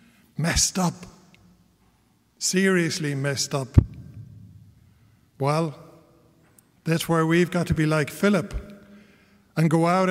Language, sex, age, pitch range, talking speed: English, male, 60-79, 145-180 Hz, 100 wpm